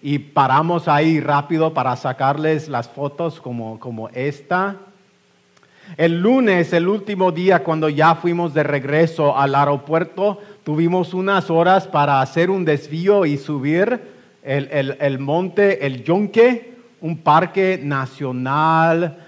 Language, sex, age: English, male, 50-69